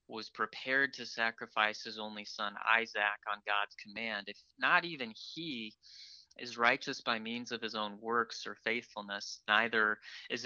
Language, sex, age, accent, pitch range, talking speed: English, male, 20-39, American, 105-120 Hz, 155 wpm